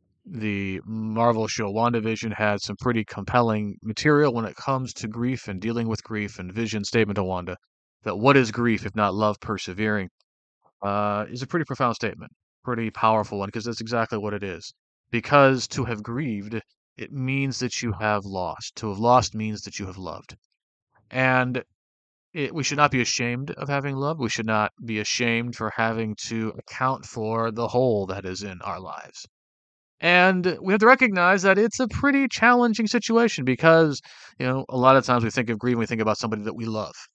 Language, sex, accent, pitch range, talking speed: English, male, American, 105-130 Hz, 195 wpm